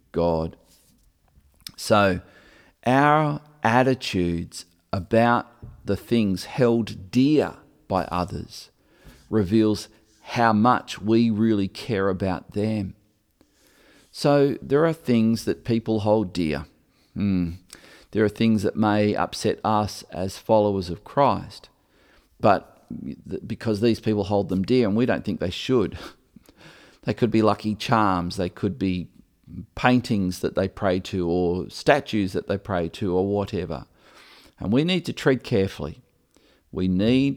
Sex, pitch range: male, 95-115 Hz